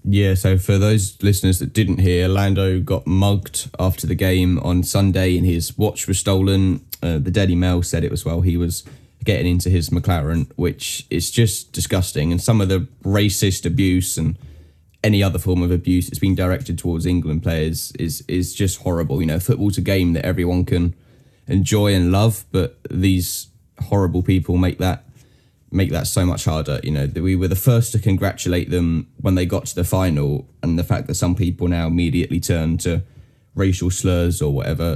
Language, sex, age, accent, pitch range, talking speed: English, male, 10-29, British, 90-100 Hz, 195 wpm